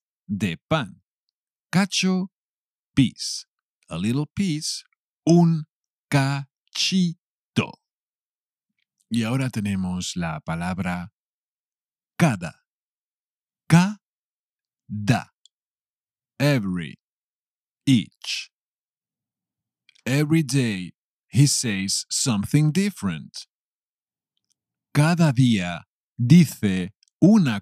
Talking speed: 60 wpm